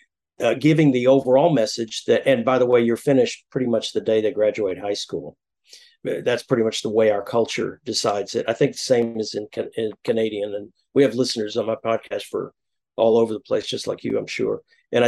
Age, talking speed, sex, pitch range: 50-69, 225 wpm, male, 110-130 Hz